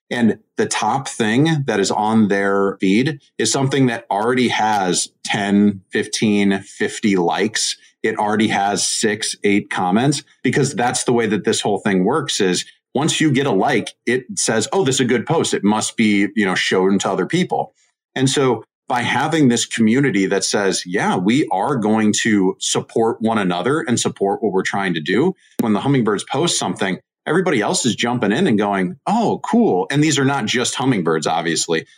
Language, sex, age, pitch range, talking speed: English, male, 30-49, 105-135 Hz, 190 wpm